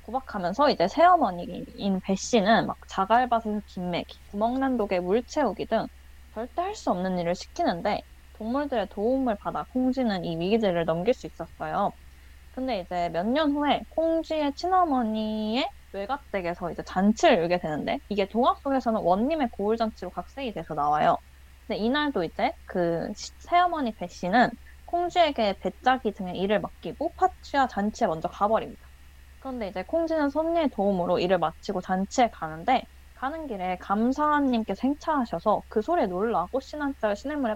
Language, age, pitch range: Korean, 20-39, 190-275 Hz